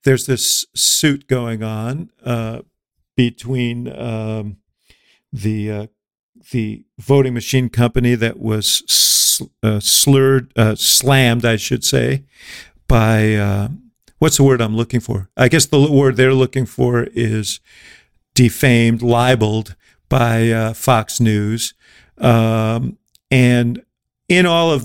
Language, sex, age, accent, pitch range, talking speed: English, male, 50-69, American, 115-135 Hz, 125 wpm